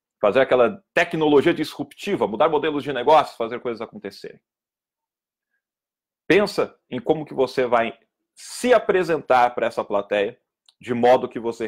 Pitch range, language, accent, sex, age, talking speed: 115-150 Hz, Portuguese, Brazilian, male, 40-59, 135 wpm